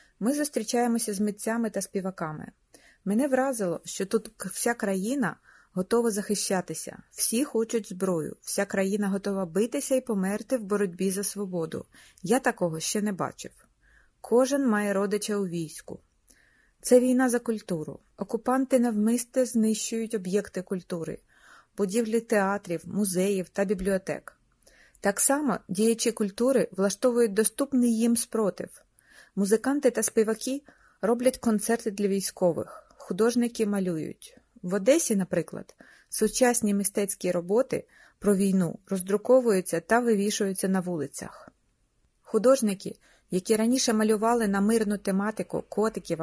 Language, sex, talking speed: Ukrainian, female, 115 wpm